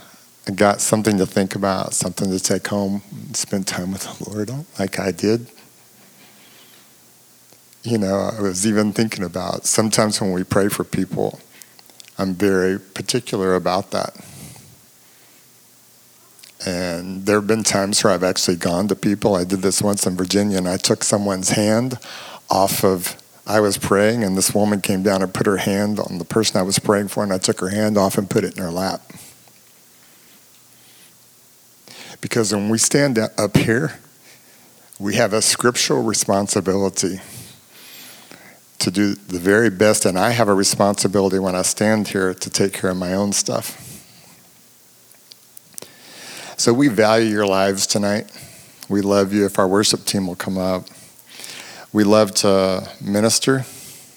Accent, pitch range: American, 95-110 Hz